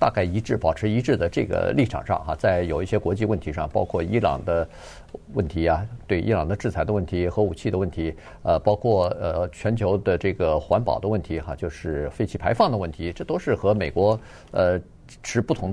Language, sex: Chinese, male